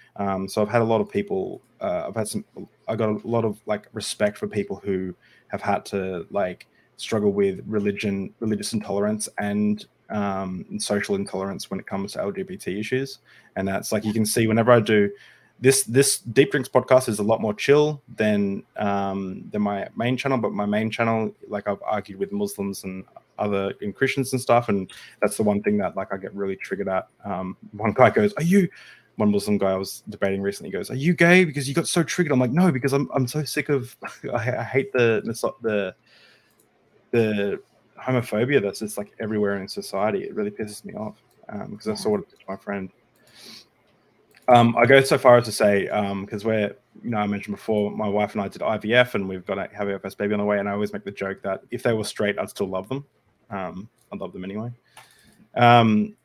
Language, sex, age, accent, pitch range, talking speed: English, male, 20-39, Australian, 100-135 Hz, 220 wpm